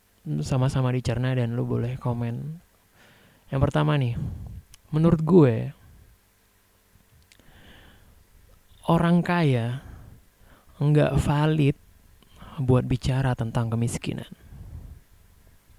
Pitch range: 95-135 Hz